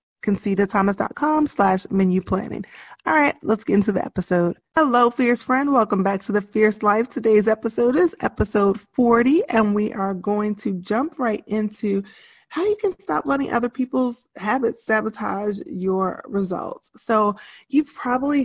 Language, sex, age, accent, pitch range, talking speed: English, female, 20-39, American, 200-240 Hz, 155 wpm